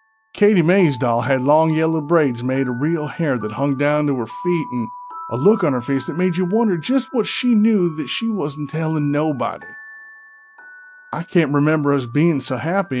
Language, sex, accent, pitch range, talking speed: English, male, American, 135-180 Hz, 200 wpm